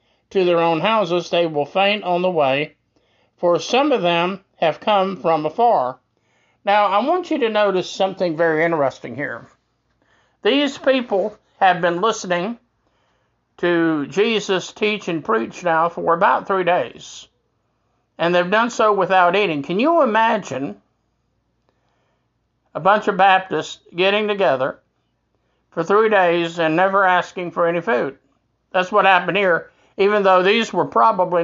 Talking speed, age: 145 wpm, 50-69